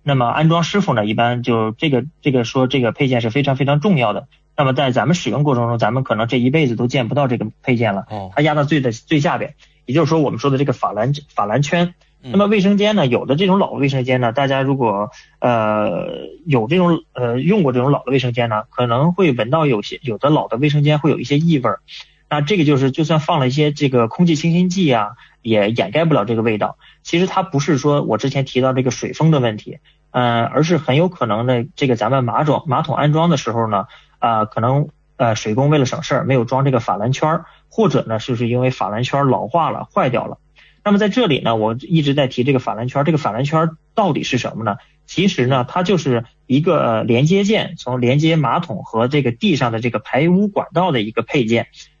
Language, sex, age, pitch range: English, male, 20-39, 120-155 Hz